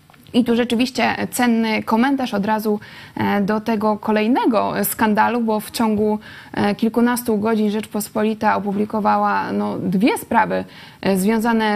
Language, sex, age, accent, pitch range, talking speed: Polish, female, 20-39, native, 210-255 Hz, 105 wpm